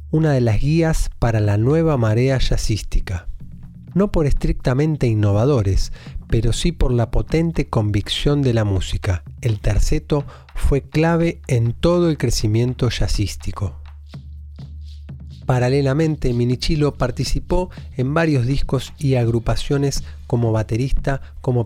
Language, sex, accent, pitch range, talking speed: Spanish, male, Argentinian, 100-135 Hz, 115 wpm